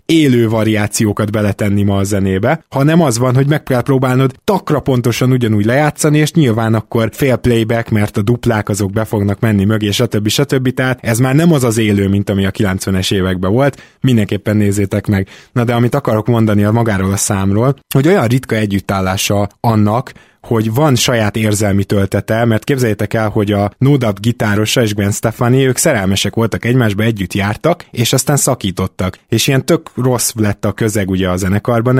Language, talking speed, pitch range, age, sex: Hungarian, 180 wpm, 105-130 Hz, 20-39, male